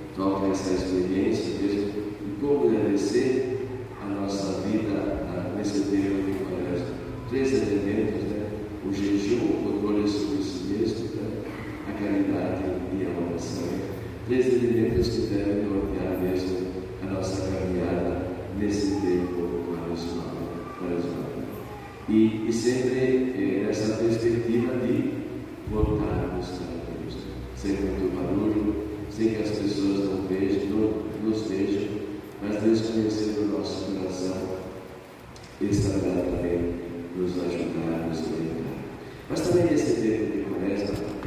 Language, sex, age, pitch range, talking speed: Portuguese, male, 40-59, 95-105 Hz, 130 wpm